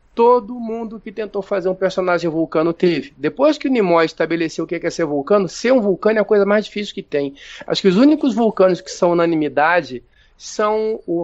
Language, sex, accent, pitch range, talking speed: Portuguese, male, Brazilian, 160-220 Hz, 210 wpm